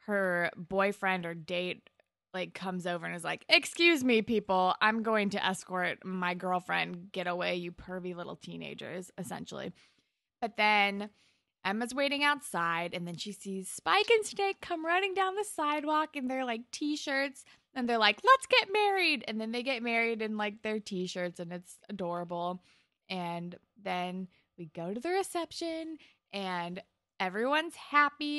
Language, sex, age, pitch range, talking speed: English, female, 20-39, 180-260 Hz, 160 wpm